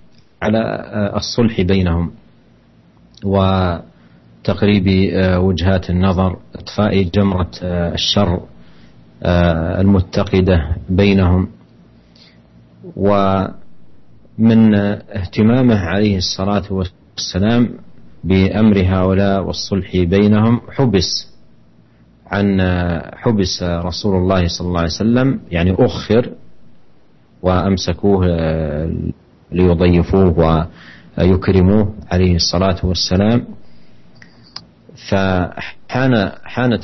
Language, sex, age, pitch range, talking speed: Indonesian, male, 40-59, 85-100 Hz, 60 wpm